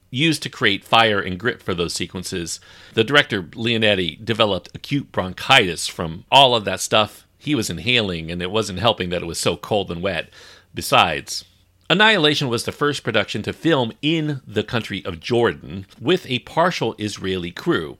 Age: 40-59